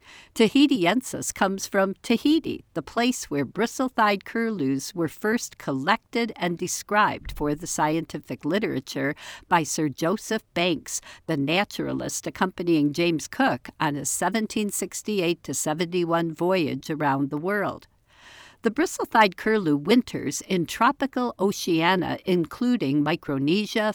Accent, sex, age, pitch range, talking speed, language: American, female, 60-79, 155-205 Hz, 110 wpm, English